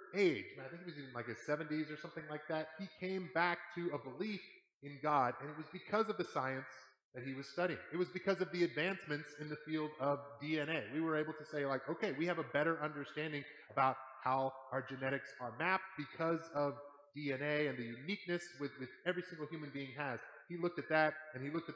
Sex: male